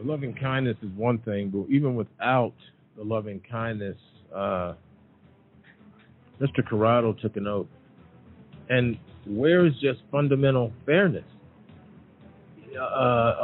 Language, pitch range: English, 125-160 Hz